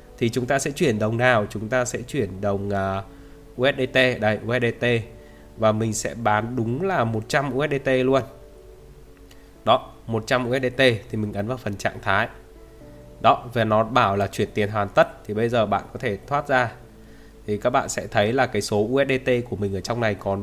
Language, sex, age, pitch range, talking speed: Vietnamese, male, 20-39, 105-130 Hz, 195 wpm